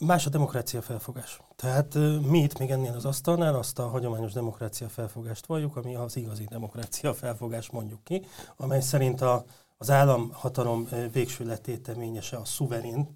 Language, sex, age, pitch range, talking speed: Hungarian, male, 30-49, 115-140 Hz, 150 wpm